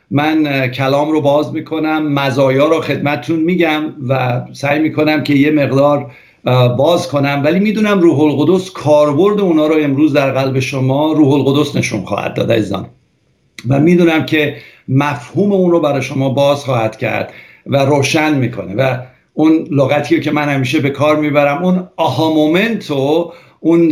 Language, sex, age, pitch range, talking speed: English, male, 60-79, 140-160 Hz, 155 wpm